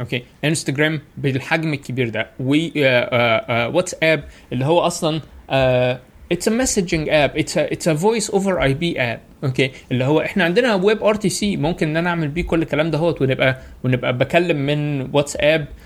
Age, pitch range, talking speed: 20-39, 135-180 Hz, 180 wpm